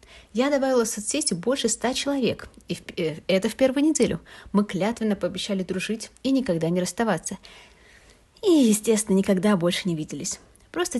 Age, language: 30-49, Russian